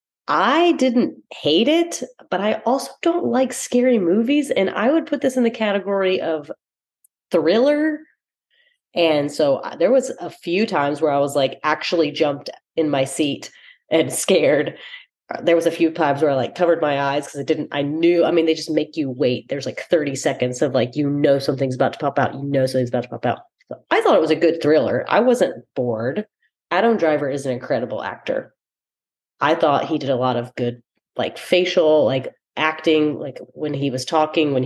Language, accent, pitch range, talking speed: English, American, 140-195 Hz, 205 wpm